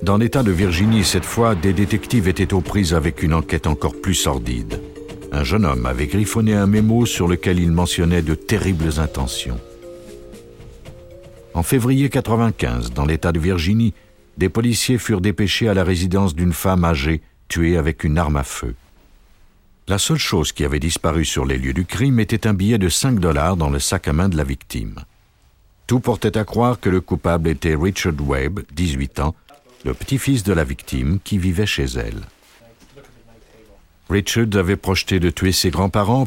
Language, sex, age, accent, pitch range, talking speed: French, male, 60-79, French, 80-105 Hz, 175 wpm